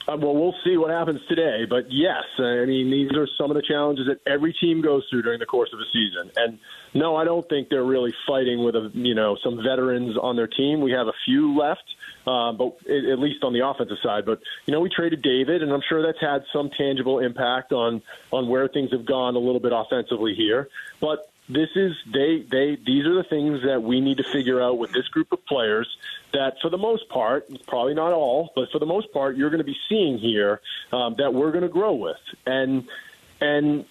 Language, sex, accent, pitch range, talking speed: English, male, American, 125-160 Hz, 230 wpm